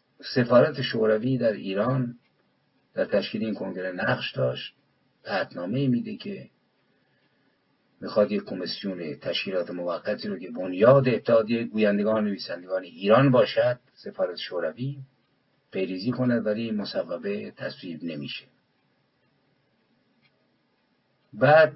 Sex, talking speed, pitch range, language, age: male, 95 wpm, 110-155 Hz, English, 50-69